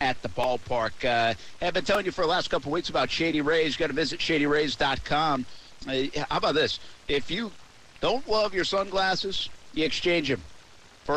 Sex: male